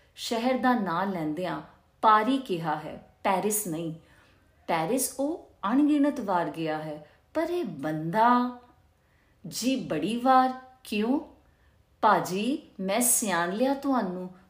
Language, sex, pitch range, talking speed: Punjabi, female, 170-245 Hz, 115 wpm